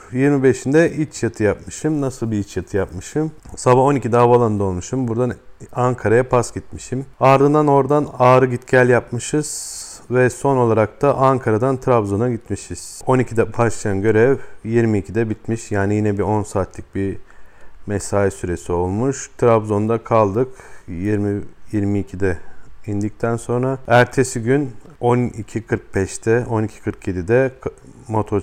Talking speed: 115 wpm